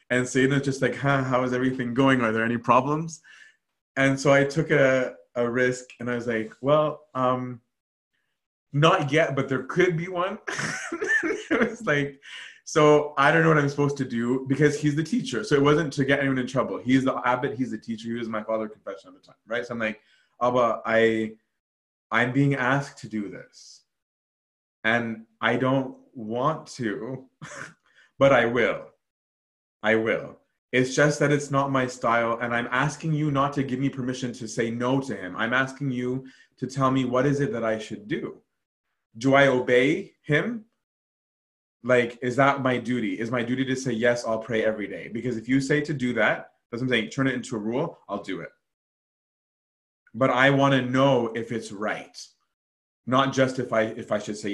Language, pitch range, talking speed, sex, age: English, 115-140 Hz, 205 wpm, male, 20-39